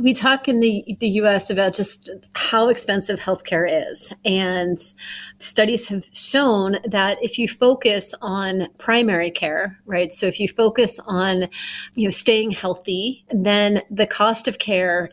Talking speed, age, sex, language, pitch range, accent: 150 wpm, 30-49, female, English, 185-225 Hz, American